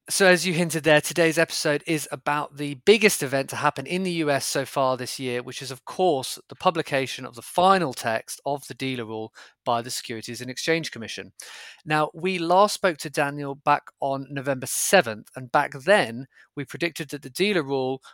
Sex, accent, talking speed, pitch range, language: male, British, 200 wpm, 125-165 Hz, English